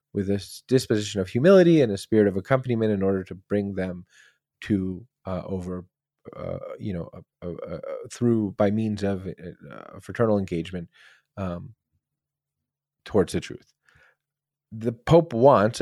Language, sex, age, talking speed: English, male, 30-49, 145 wpm